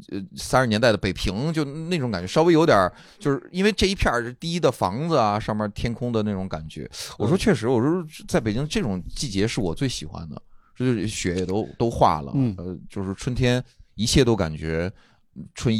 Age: 30-49